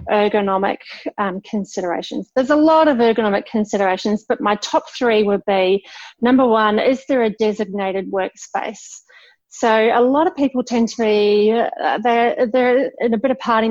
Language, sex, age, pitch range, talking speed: English, female, 30-49, 210-255 Hz, 165 wpm